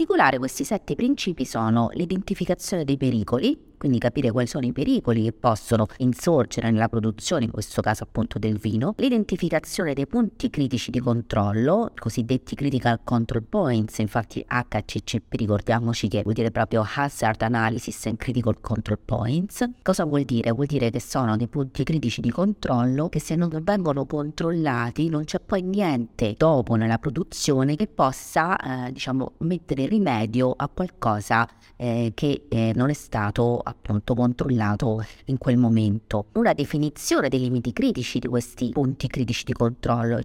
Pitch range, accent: 115-150 Hz, native